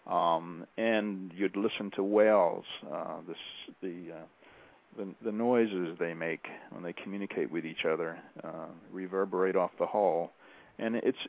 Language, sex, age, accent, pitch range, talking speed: English, male, 50-69, American, 90-120 Hz, 150 wpm